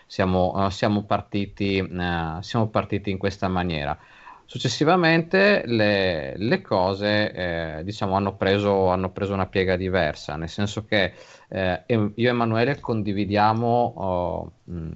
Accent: native